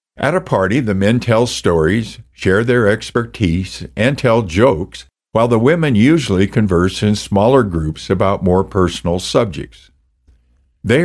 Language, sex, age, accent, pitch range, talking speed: English, male, 60-79, American, 75-115 Hz, 140 wpm